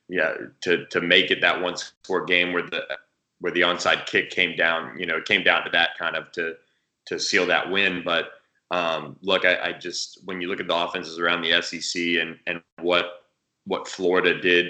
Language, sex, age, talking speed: English, male, 20-39, 210 wpm